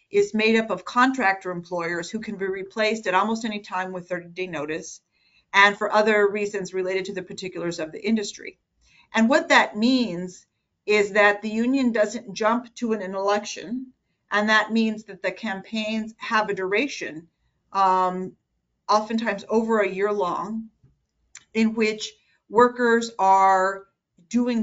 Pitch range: 185-225 Hz